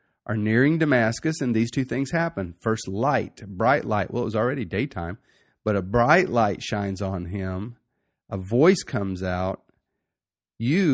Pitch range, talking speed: 100-135 Hz, 160 wpm